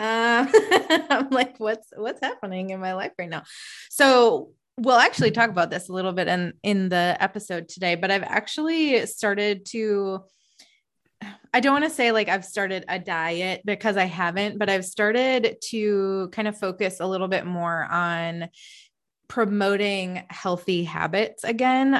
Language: English